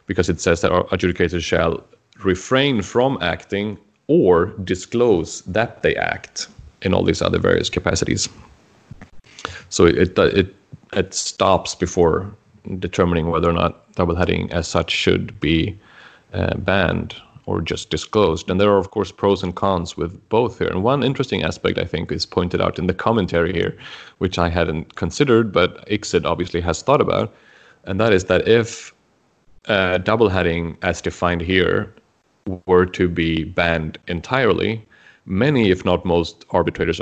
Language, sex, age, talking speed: English, male, 30-49, 155 wpm